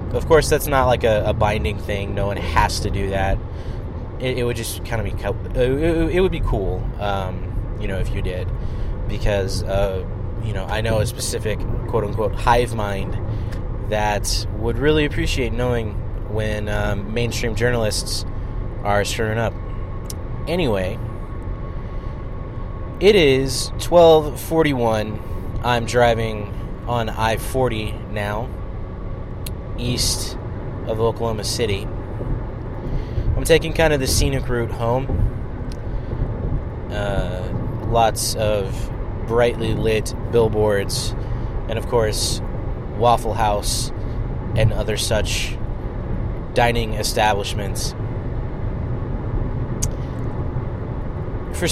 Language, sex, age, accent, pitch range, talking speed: English, male, 20-39, American, 100-120 Hz, 110 wpm